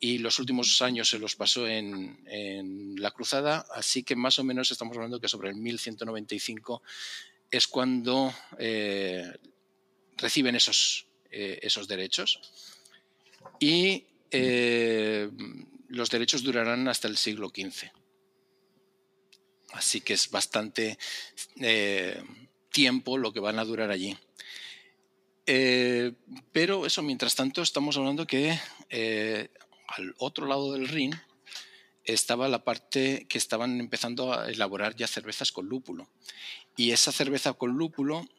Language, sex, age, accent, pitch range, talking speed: Spanish, male, 50-69, Spanish, 110-135 Hz, 125 wpm